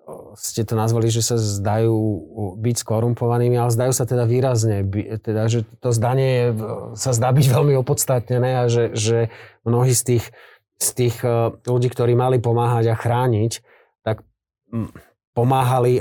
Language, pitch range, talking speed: Slovak, 110-130 Hz, 150 wpm